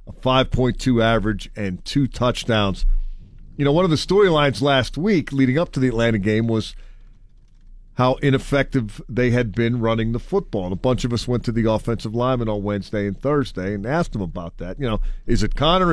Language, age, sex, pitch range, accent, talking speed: English, 40-59, male, 105-135 Hz, American, 200 wpm